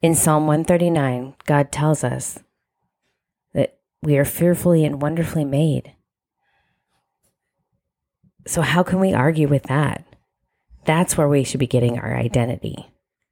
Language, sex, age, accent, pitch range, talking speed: English, female, 30-49, American, 135-155 Hz, 125 wpm